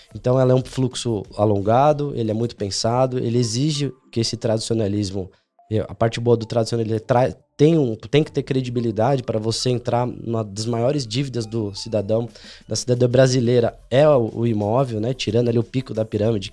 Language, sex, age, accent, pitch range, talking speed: Portuguese, male, 20-39, Brazilian, 110-145 Hz, 175 wpm